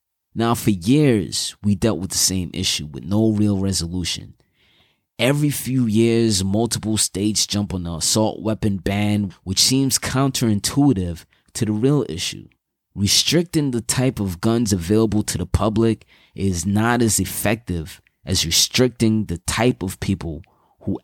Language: English